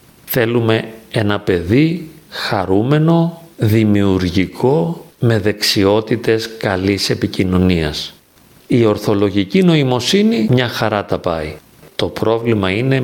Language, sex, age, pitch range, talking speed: Greek, male, 50-69, 100-125 Hz, 85 wpm